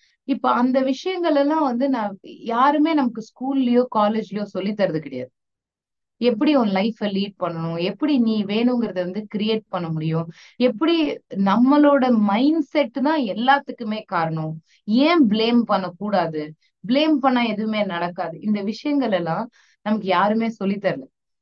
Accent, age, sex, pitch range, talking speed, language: native, 20-39, female, 185-255 Hz, 125 wpm, Tamil